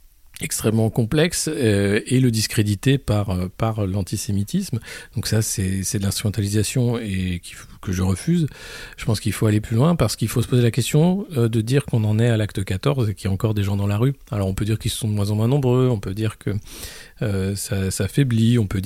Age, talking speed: 40-59, 240 wpm